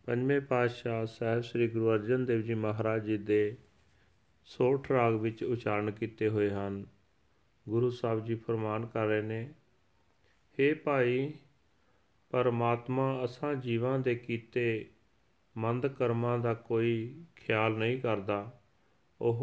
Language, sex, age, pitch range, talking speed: Punjabi, male, 40-59, 110-125 Hz, 125 wpm